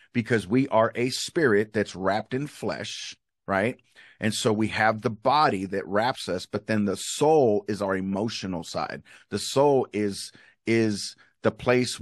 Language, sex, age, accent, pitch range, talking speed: English, male, 40-59, American, 105-125 Hz, 165 wpm